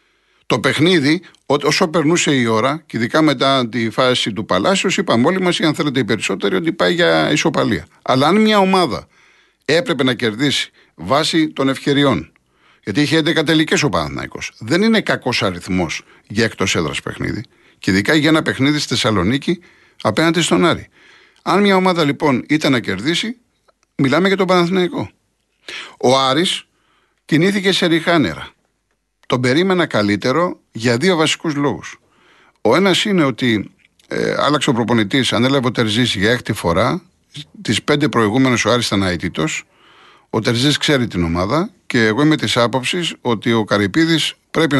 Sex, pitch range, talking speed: male, 120-170 Hz, 155 wpm